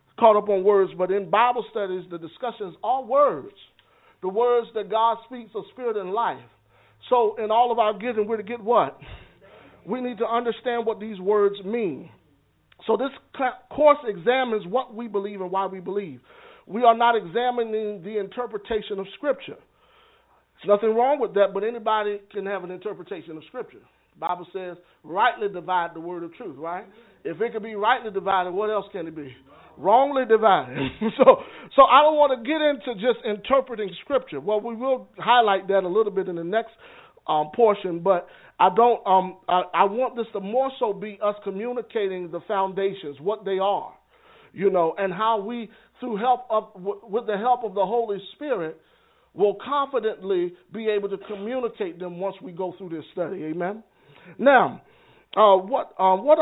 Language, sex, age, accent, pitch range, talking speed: English, male, 50-69, American, 195-245 Hz, 185 wpm